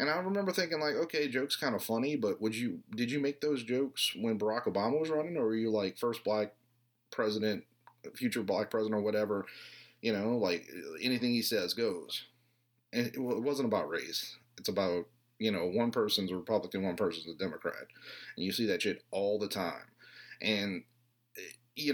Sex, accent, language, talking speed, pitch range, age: male, American, English, 190 wpm, 105-130 Hz, 30-49